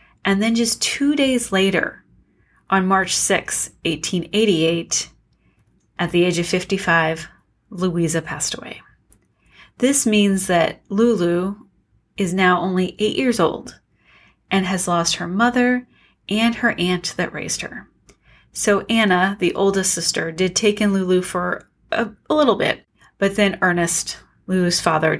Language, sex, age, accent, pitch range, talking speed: English, female, 30-49, American, 170-210 Hz, 140 wpm